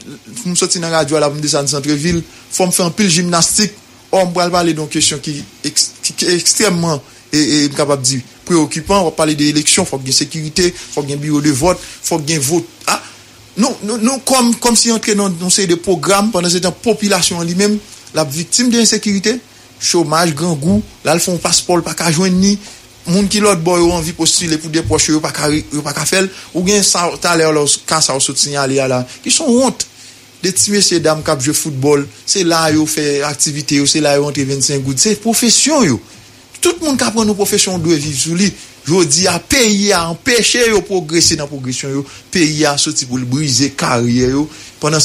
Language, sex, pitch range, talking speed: English, male, 145-185 Hz, 160 wpm